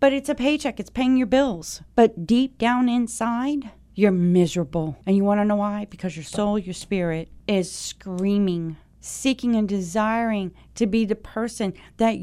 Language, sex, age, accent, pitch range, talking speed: English, female, 40-59, American, 190-255 Hz, 170 wpm